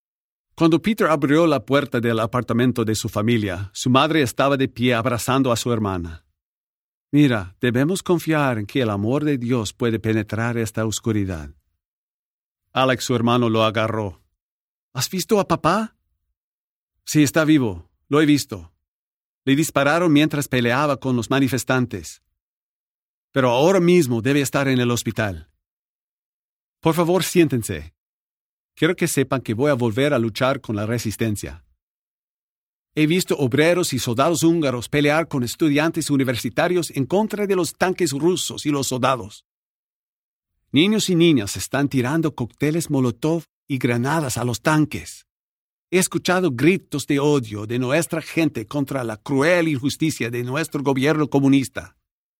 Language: English